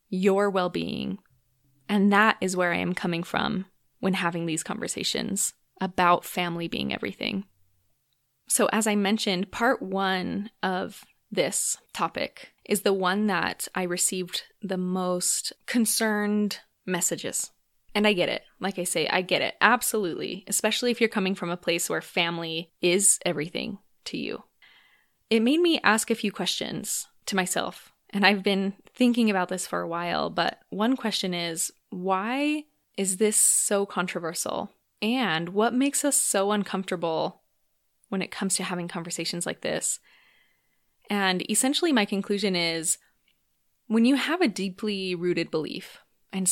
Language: English